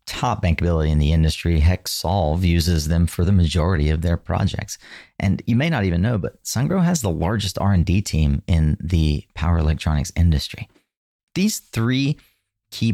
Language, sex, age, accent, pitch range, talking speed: English, male, 40-59, American, 85-110 Hz, 160 wpm